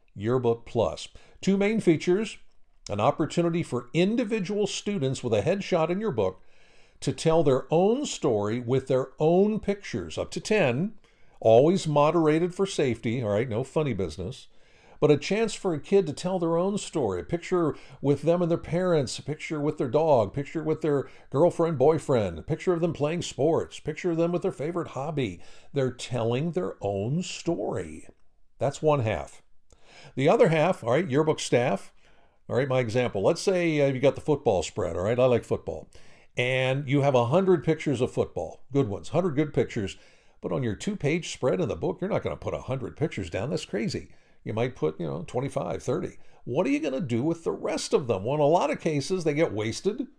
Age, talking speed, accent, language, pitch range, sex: 60-79, 200 wpm, American, English, 130-175 Hz, male